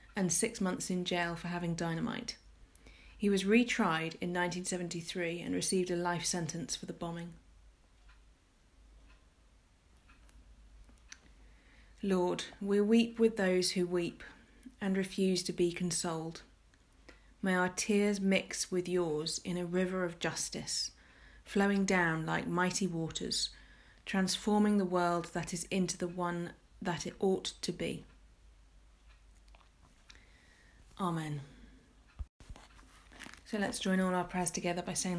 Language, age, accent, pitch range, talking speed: English, 30-49, British, 165-190 Hz, 125 wpm